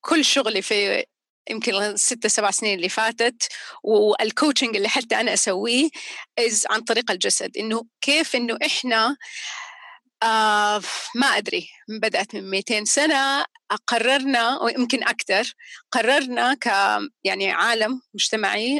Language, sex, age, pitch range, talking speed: Arabic, female, 30-49, 215-280 Hz, 115 wpm